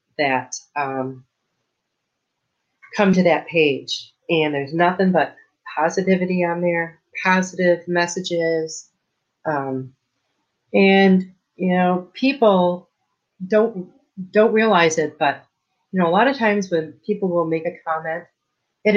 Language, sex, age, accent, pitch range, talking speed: English, female, 40-59, American, 150-185 Hz, 120 wpm